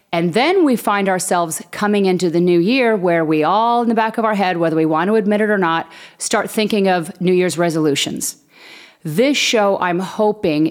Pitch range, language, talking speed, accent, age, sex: 170-205 Hz, English, 205 wpm, American, 40-59, female